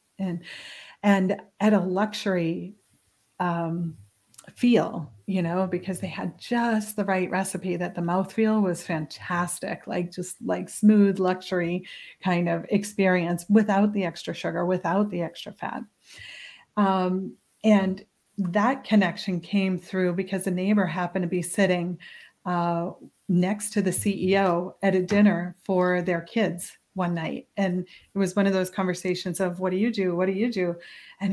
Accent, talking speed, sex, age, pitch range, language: American, 155 wpm, female, 40-59, 180-210 Hz, English